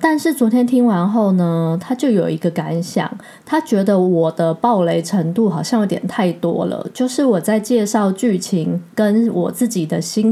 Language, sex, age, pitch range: Chinese, female, 20-39, 175-225 Hz